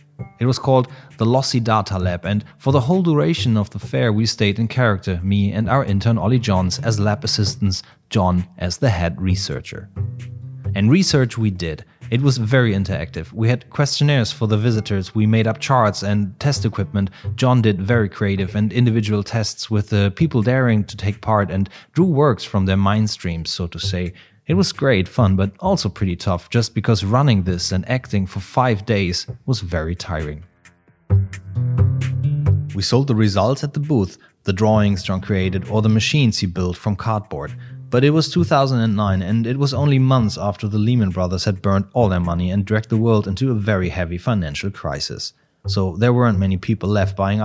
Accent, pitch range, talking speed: German, 95-125 Hz, 190 wpm